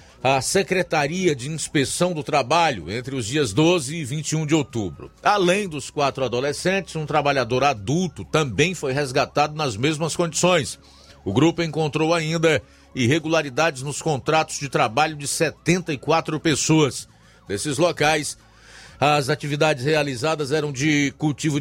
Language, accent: Portuguese, Brazilian